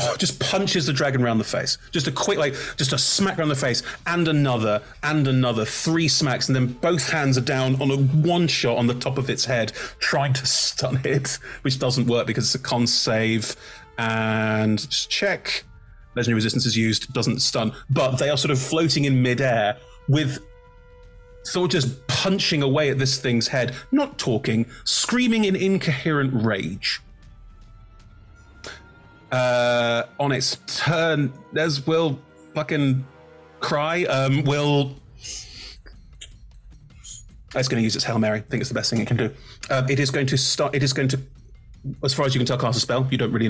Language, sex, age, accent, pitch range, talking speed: English, male, 30-49, British, 115-140 Hz, 175 wpm